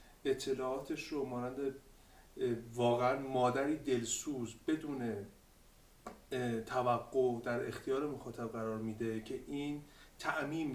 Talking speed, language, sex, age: 90 wpm, Persian, male, 30-49